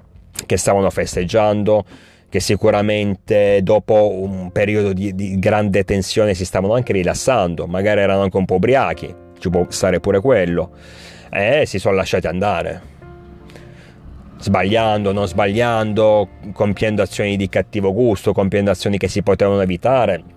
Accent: native